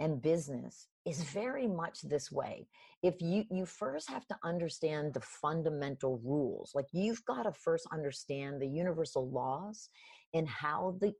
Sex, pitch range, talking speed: female, 140-185 Hz, 155 wpm